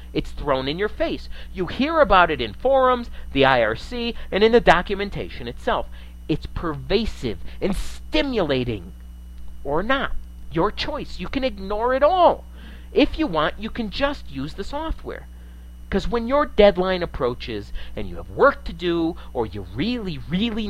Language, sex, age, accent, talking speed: English, male, 50-69, American, 160 wpm